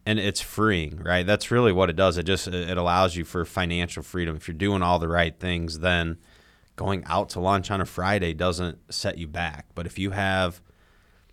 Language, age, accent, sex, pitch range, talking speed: English, 30-49, American, male, 85-105 Hz, 210 wpm